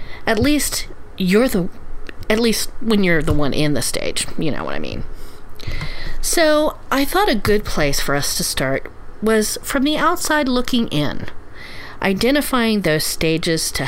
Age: 40-59